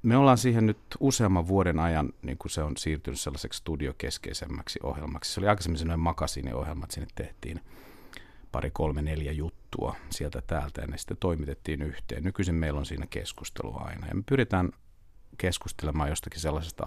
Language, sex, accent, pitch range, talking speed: Finnish, male, native, 75-95 Hz, 165 wpm